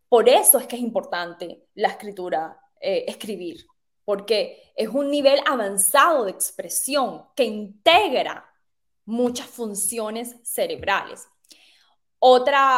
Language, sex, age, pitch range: Spanish, female, 10-29, 225-295 Hz